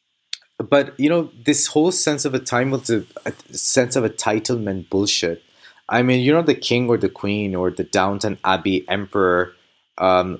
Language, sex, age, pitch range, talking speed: English, male, 30-49, 105-130 Hz, 175 wpm